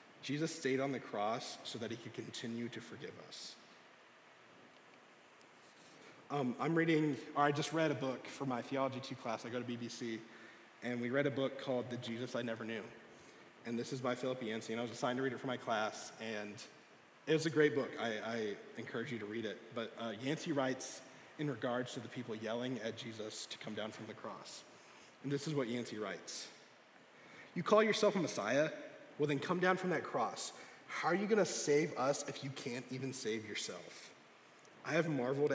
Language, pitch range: English, 115-145 Hz